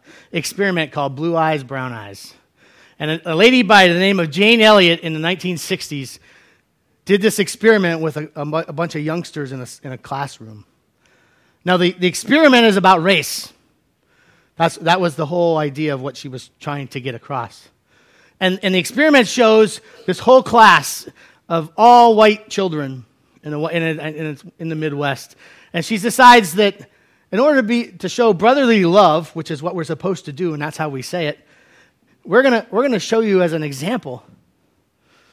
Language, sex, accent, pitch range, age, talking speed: English, male, American, 150-220 Hz, 40-59, 190 wpm